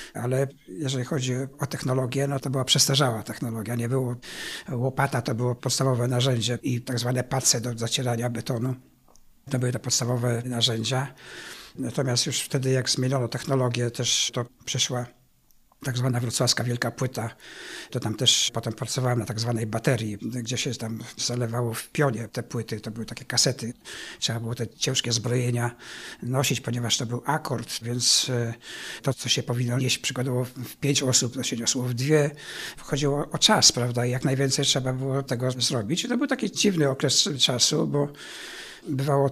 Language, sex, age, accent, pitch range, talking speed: Polish, male, 60-79, native, 120-135 Hz, 165 wpm